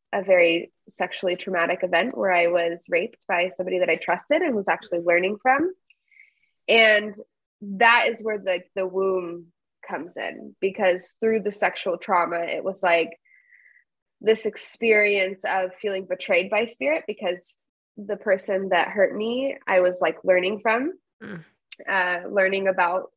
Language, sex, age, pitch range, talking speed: English, female, 20-39, 185-220 Hz, 150 wpm